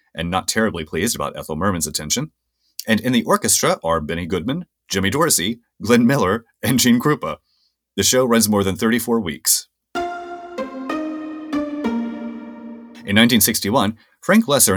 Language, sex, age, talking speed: English, male, 30-49, 135 wpm